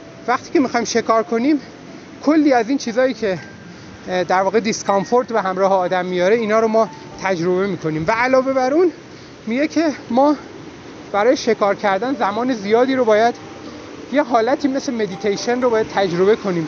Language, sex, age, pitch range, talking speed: Persian, male, 30-49, 190-265 Hz, 160 wpm